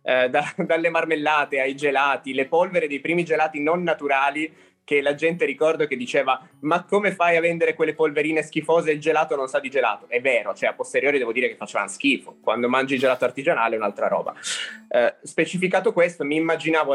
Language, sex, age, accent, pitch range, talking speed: Italian, male, 20-39, native, 130-170 Hz, 195 wpm